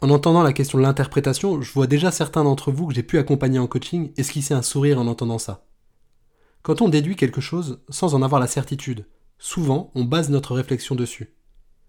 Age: 20-39